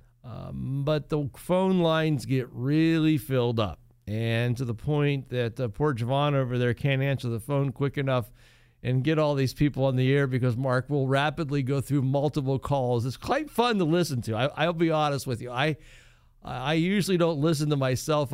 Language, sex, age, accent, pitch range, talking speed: English, male, 50-69, American, 130-170 Hz, 195 wpm